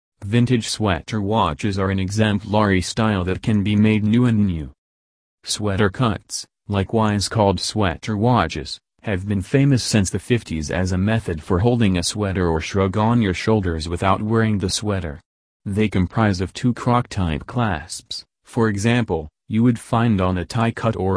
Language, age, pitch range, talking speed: English, 30-49, 95-115 Hz, 165 wpm